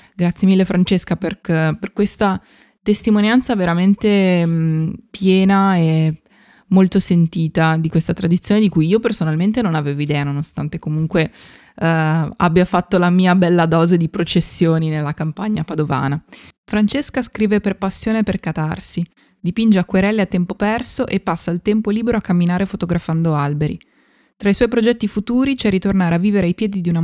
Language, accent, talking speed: Italian, native, 155 wpm